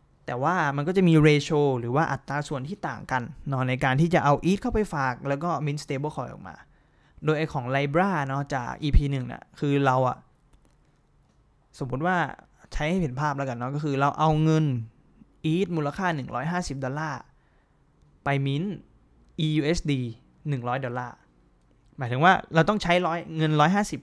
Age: 20-39